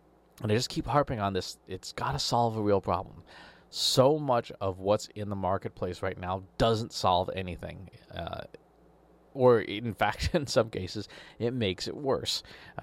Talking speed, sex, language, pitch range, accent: 175 wpm, male, English, 95-135 Hz, American